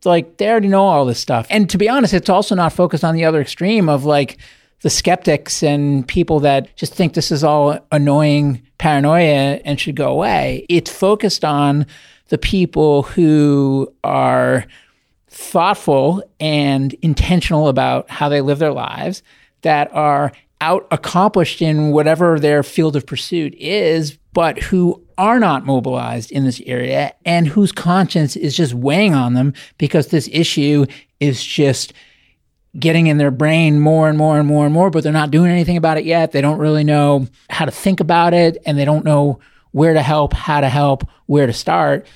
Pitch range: 145-170 Hz